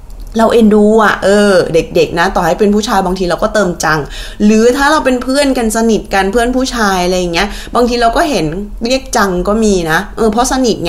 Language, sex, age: Thai, female, 20-39